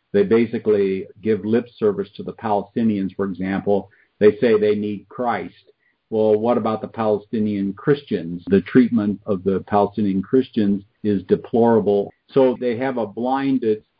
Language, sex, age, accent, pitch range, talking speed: English, male, 50-69, American, 105-125 Hz, 145 wpm